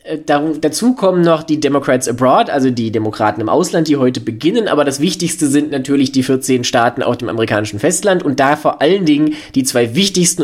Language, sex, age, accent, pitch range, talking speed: German, male, 20-39, German, 135-175 Hz, 195 wpm